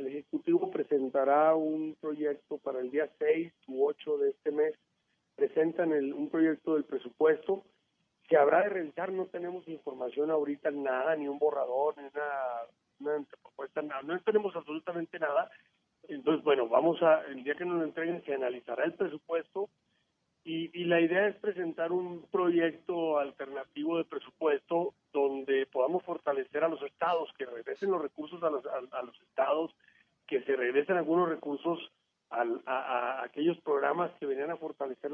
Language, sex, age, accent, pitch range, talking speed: Spanish, male, 40-59, Mexican, 150-215 Hz, 160 wpm